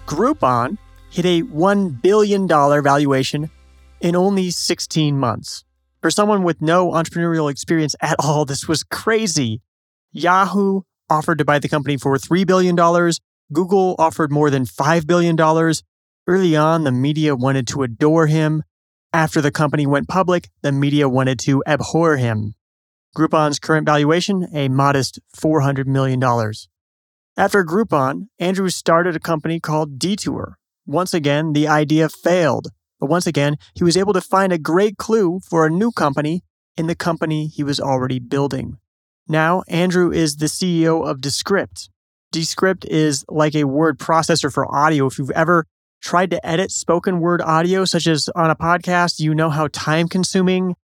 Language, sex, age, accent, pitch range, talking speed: English, male, 30-49, American, 140-175 Hz, 155 wpm